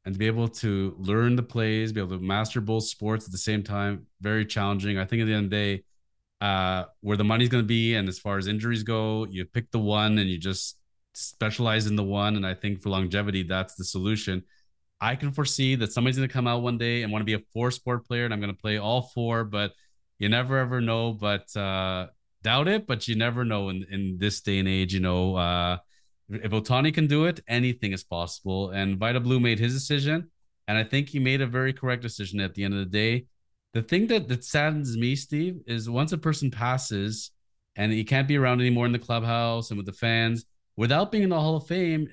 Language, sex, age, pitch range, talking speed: English, male, 30-49, 100-125 Hz, 240 wpm